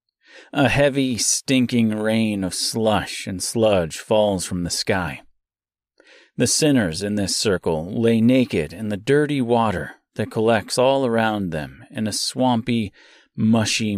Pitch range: 105-130 Hz